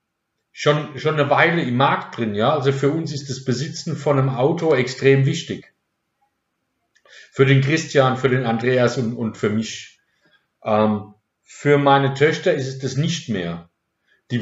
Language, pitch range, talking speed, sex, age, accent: German, 115-145 Hz, 160 wpm, male, 50-69, German